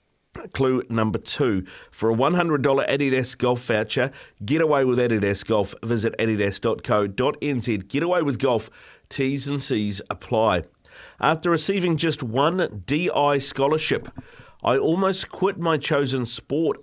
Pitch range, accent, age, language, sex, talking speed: 105-135 Hz, Australian, 40-59, English, male, 130 wpm